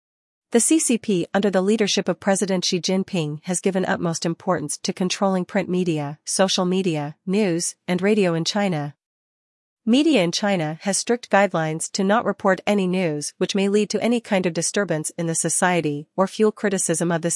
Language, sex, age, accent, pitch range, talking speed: English, female, 40-59, American, 170-205 Hz, 175 wpm